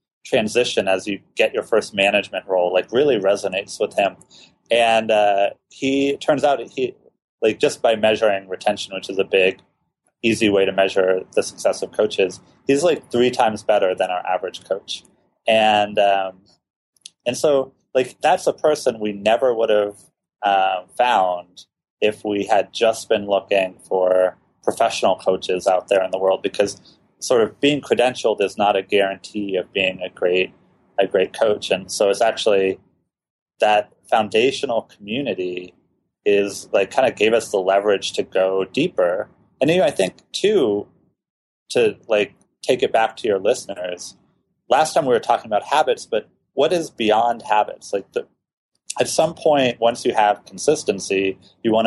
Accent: American